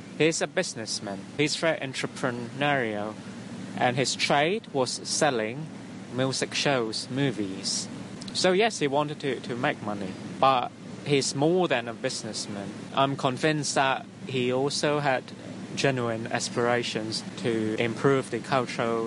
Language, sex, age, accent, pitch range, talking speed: English, male, 20-39, British, 120-150 Hz, 125 wpm